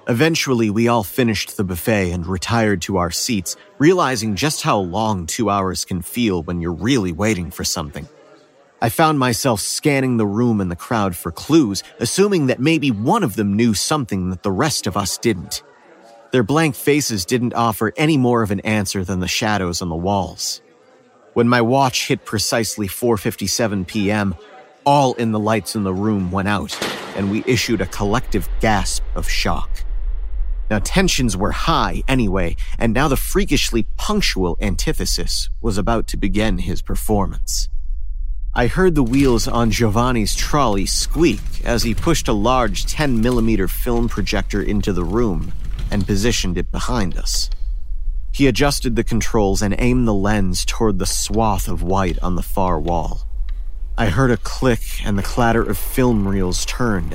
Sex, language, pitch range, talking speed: male, English, 90-120 Hz, 165 wpm